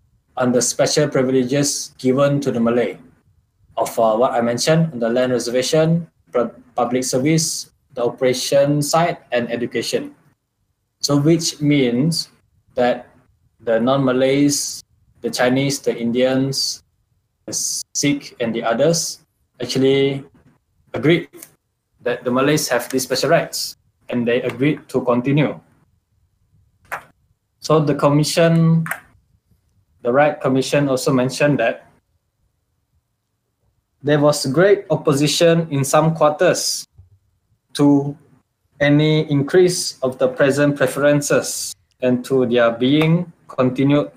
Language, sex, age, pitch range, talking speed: Malay, male, 20-39, 120-145 Hz, 105 wpm